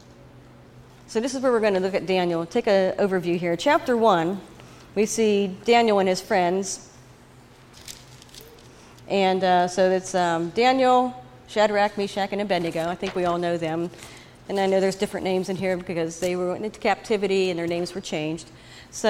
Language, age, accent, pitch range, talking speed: English, 40-59, American, 175-220 Hz, 180 wpm